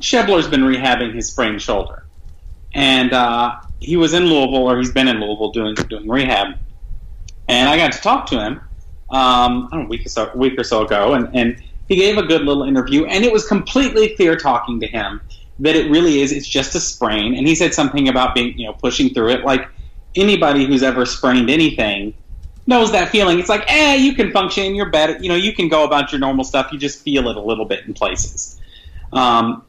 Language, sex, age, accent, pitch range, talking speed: English, male, 30-49, American, 115-165 Hz, 225 wpm